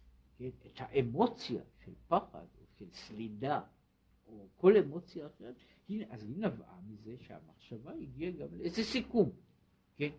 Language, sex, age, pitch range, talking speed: Hebrew, male, 60-79, 115-185 Hz, 130 wpm